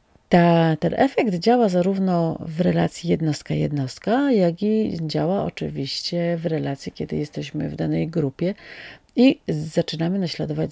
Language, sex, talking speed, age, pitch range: Polish, female, 120 wpm, 40-59, 145-190 Hz